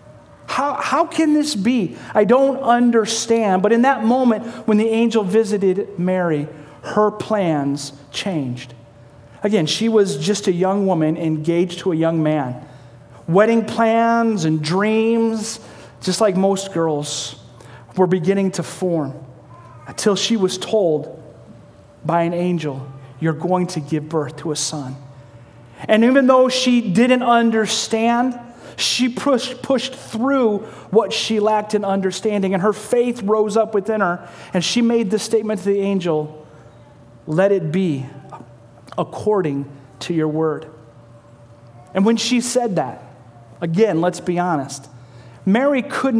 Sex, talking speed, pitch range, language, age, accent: male, 140 wpm, 150-220 Hz, English, 40-59, American